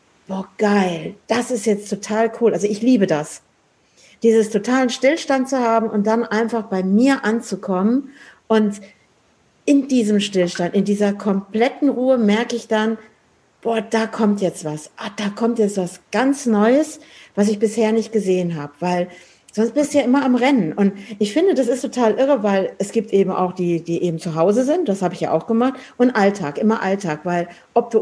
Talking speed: 190 wpm